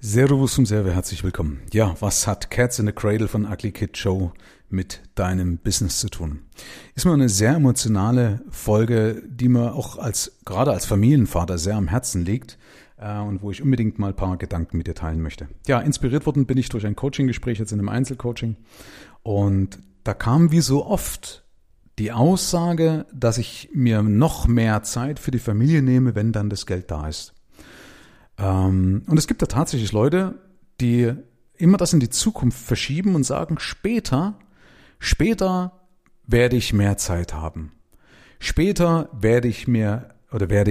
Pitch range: 100-135 Hz